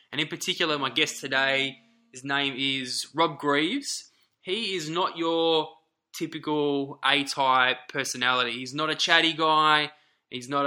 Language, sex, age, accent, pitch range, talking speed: English, male, 20-39, Australian, 130-160 Hz, 140 wpm